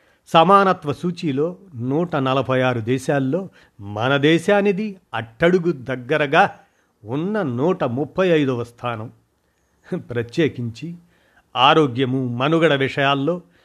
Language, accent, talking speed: Telugu, native, 85 wpm